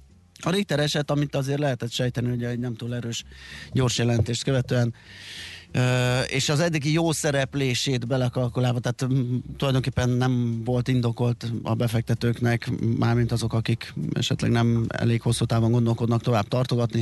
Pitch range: 105-125 Hz